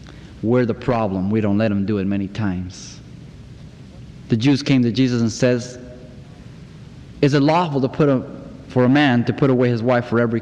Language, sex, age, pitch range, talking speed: English, male, 30-49, 120-150 Hz, 195 wpm